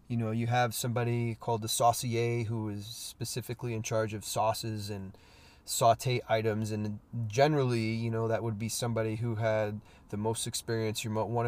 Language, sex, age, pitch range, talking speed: English, male, 20-39, 105-125 Hz, 165 wpm